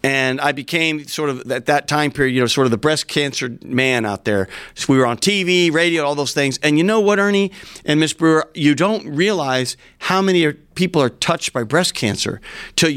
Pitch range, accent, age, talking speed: 130-170 Hz, American, 40-59, 220 wpm